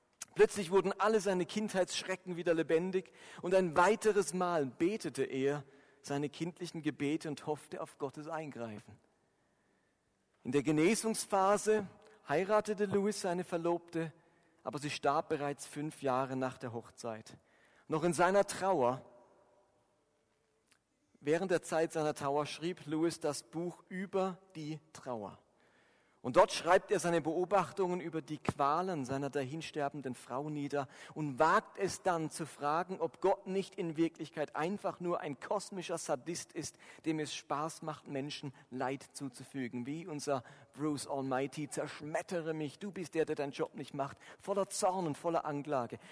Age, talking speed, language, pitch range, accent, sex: 40-59, 140 wpm, German, 145-185 Hz, German, male